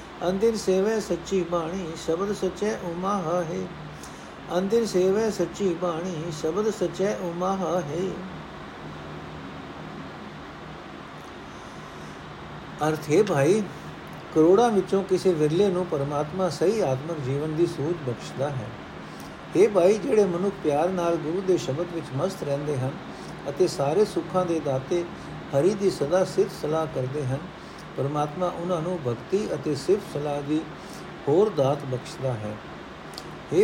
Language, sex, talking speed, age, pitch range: Punjabi, male, 105 wpm, 60-79, 145-185 Hz